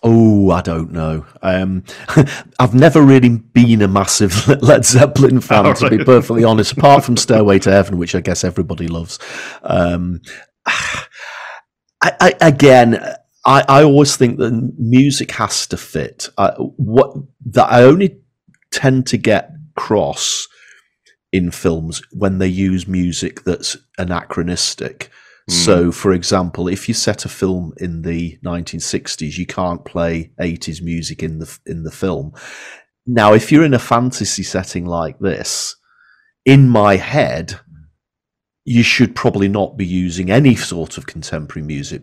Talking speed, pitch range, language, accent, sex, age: 145 wpm, 85-115 Hz, English, British, male, 40-59